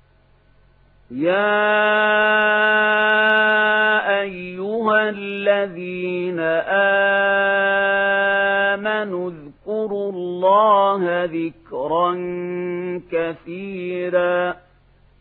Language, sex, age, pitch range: Arabic, male, 40-59, 180-205 Hz